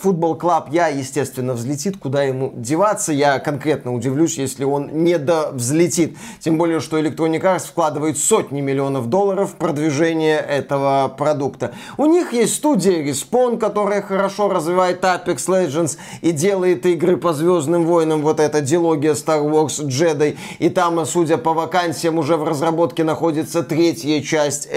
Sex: male